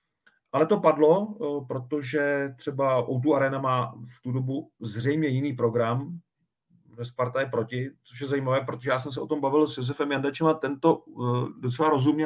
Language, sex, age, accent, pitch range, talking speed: Czech, male, 40-59, native, 120-145 Hz, 160 wpm